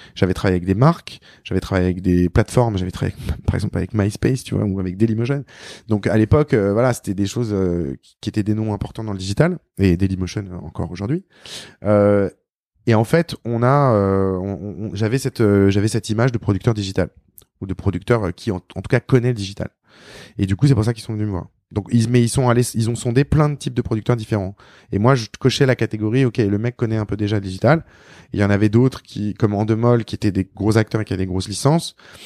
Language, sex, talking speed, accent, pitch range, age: French, male, 245 wpm, French, 100-120 Hz, 20-39